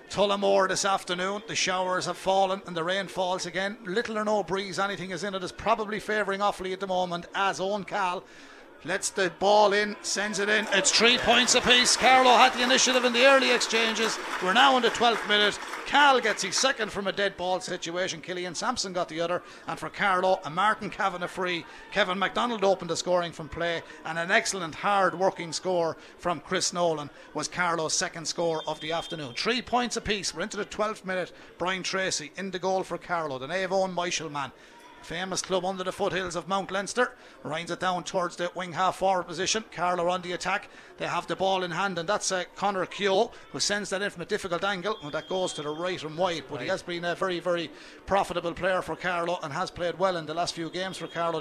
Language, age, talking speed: English, 60-79, 220 wpm